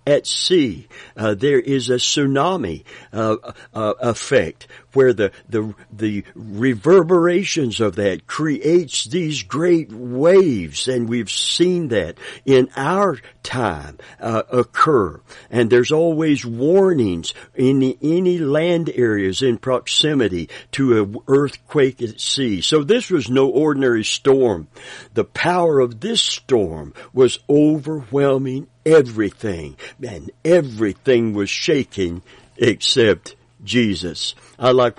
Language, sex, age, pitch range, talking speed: English, male, 60-79, 110-155 Hz, 115 wpm